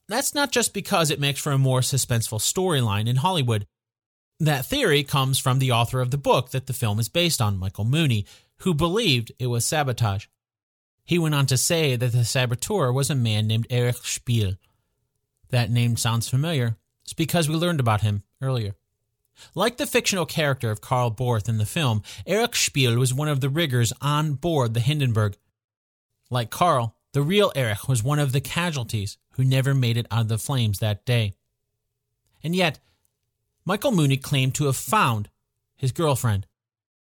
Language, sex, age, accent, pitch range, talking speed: English, male, 30-49, American, 115-155 Hz, 180 wpm